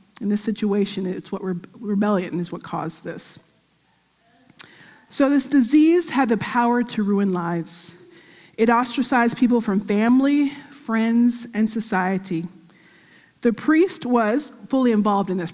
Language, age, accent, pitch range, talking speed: English, 40-59, American, 190-250 Hz, 140 wpm